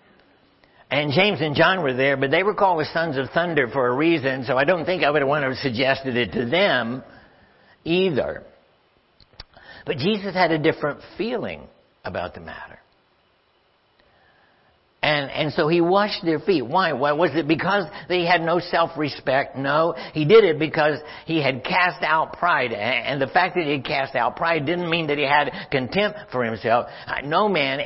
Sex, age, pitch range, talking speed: male, 60-79, 140-180 Hz, 185 wpm